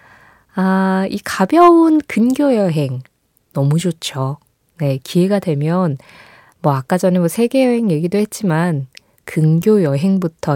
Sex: female